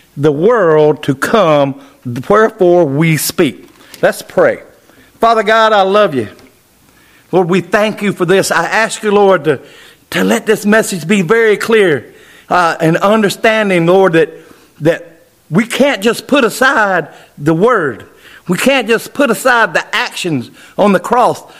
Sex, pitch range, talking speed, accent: male, 170-240 Hz, 155 wpm, American